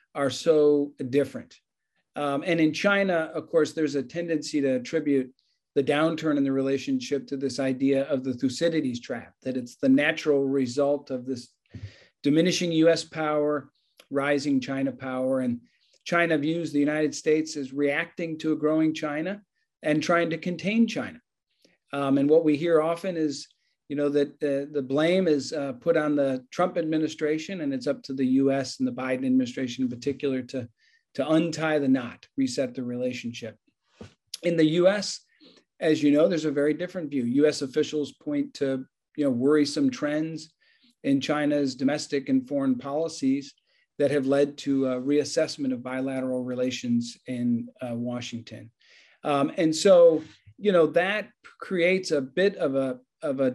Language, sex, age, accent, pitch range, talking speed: English, male, 40-59, American, 135-160 Hz, 160 wpm